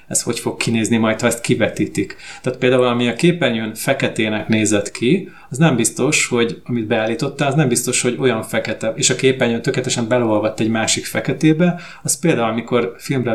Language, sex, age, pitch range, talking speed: Hungarian, male, 30-49, 110-125 Hz, 180 wpm